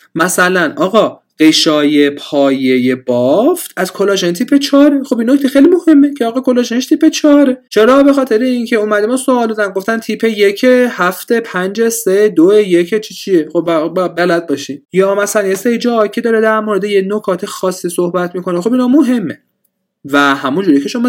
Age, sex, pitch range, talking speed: 30-49, male, 145-210 Hz, 170 wpm